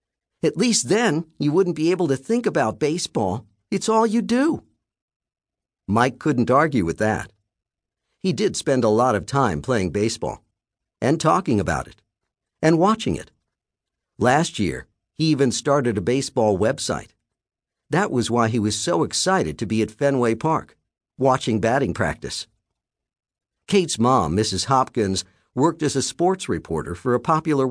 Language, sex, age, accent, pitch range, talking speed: English, male, 50-69, American, 110-140 Hz, 155 wpm